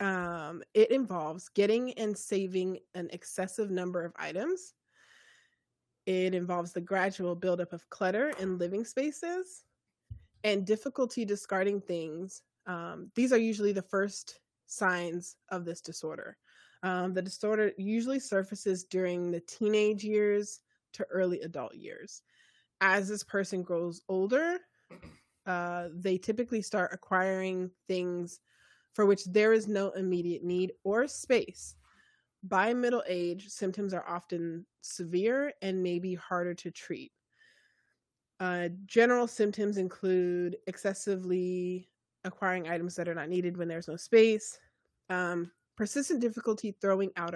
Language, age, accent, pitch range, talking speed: English, 20-39, American, 175-215 Hz, 130 wpm